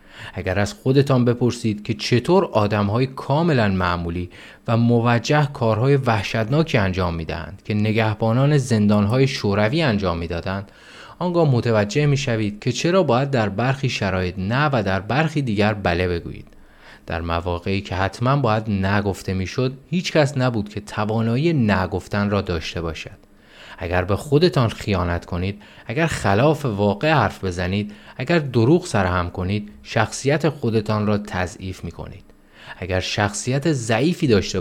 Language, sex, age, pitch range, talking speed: Persian, male, 30-49, 95-125 Hz, 135 wpm